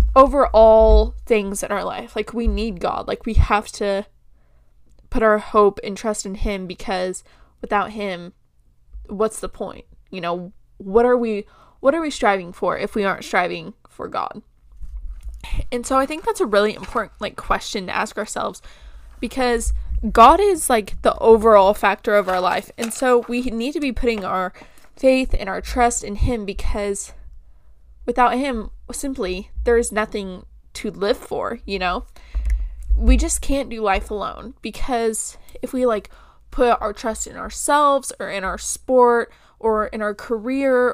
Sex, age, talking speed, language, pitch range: female, 10-29, 165 wpm, English, 195-245 Hz